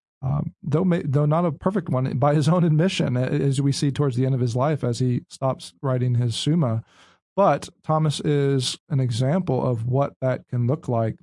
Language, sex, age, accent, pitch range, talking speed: English, male, 40-59, American, 130-175 Hz, 190 wpm